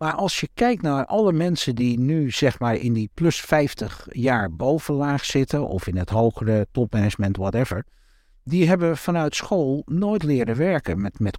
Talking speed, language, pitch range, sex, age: 175 wpm, Dutch, 105-140 Hz, male, 60-79